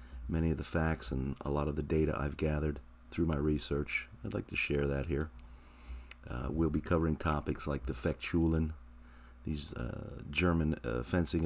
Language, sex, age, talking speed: English, male, 40-59, 180 wpm